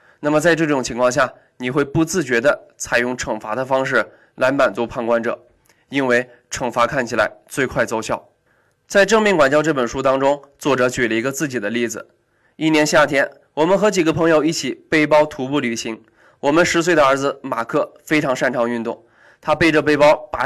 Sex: male